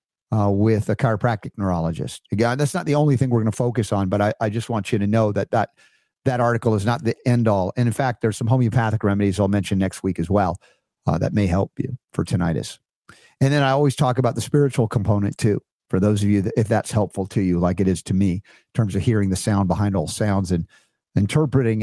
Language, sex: English, male